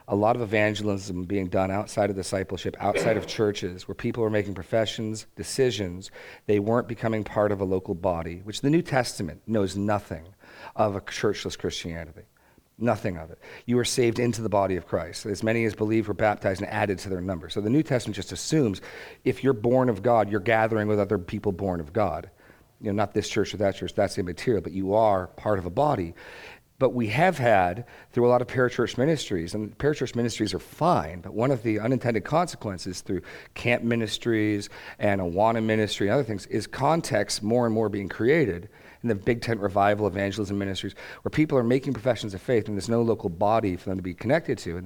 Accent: American